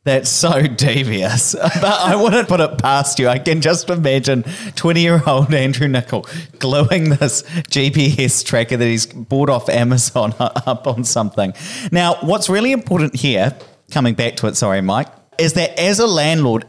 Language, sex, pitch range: English, male, 125-170 Hz